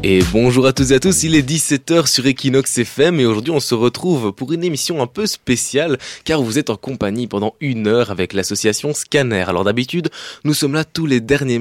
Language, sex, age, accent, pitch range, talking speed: French, male, 20-39, French, 105-140 Hz, 220 wpm